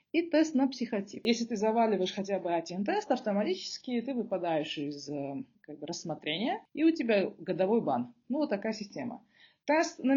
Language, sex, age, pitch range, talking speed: Russian, female, 30-49, 185-260 Hz, 170 wpm